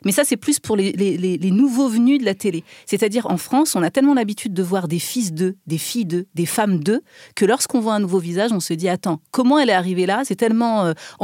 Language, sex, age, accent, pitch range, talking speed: French, female, 40-59, French, 180-240 Hz, 280 wpm